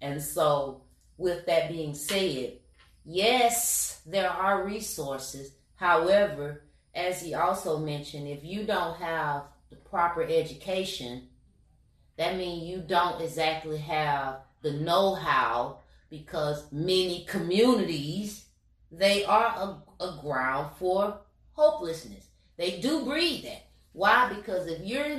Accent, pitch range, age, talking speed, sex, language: American, 155-210 Hz, 30-49, 115 wpm, female, English